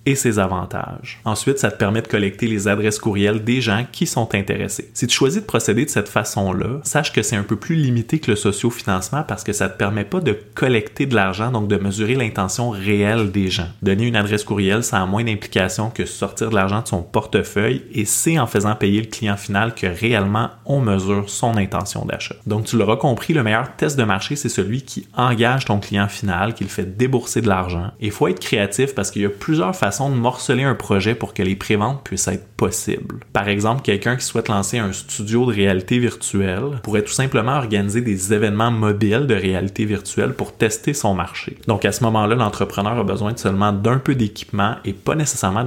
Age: 20-39